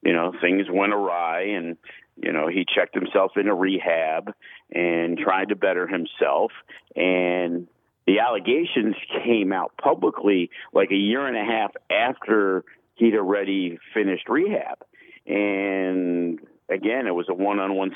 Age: 50-69